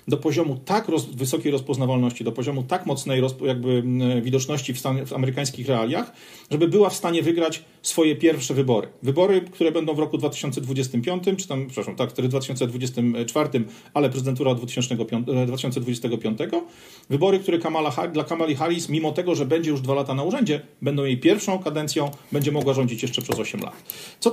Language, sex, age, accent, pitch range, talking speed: Polish, male, 40-59, native, 130-160 Hz, 170 wpm